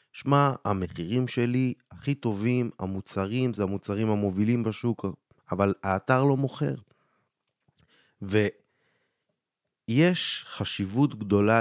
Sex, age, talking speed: male, 30-49, 90 wpm